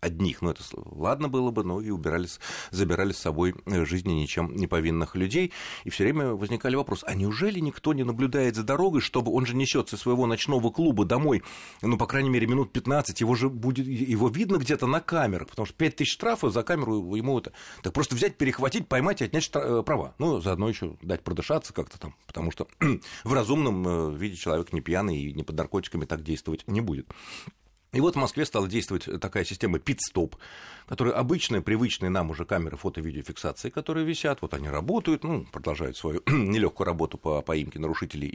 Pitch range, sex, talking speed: 85-130 Hz, male, 190 wpm